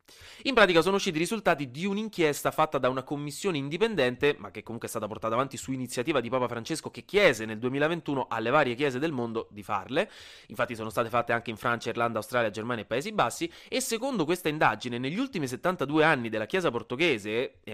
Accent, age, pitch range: native, 20-39, 125-185 Hz